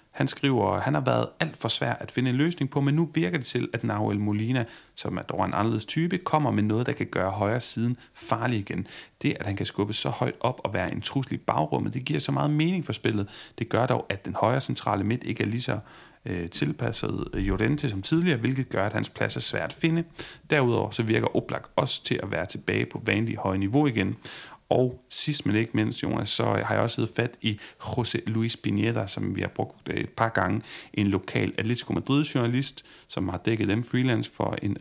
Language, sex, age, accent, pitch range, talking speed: Danish, male, 30-49, native, 110-145 Hz, 230 wpm